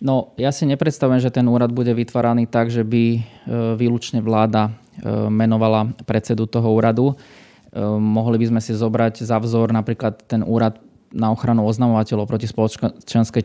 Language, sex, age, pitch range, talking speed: Slovak, male, 20-39, 110-120 Hz, 145 wpm